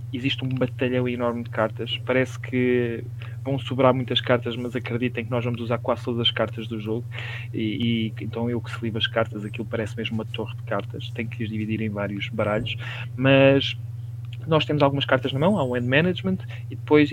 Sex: male